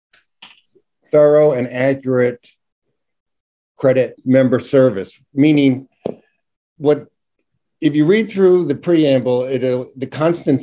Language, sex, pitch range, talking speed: English, male, 110-135 Hz, 95 wpm